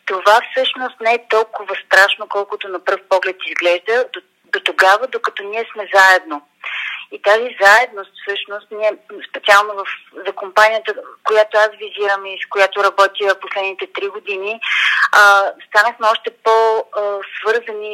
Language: Bulgarian